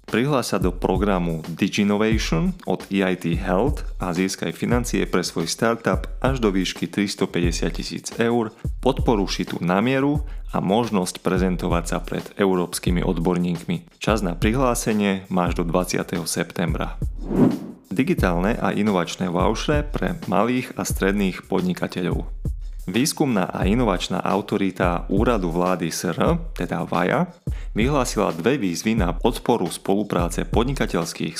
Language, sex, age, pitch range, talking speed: Slovak, male, 30-49, 90-110 Hz, 115 wpm